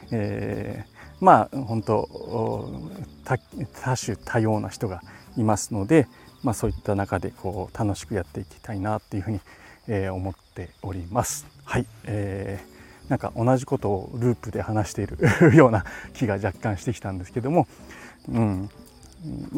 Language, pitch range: Japanese, 100-125 Hz